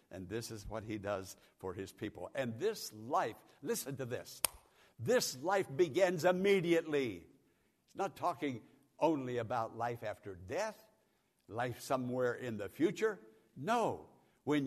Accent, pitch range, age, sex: American, 110-165 Hz, 60-79, male